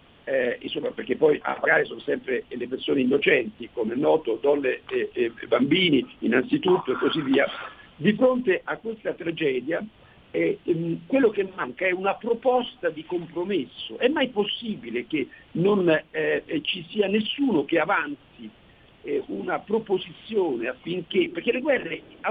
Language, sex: Italian, male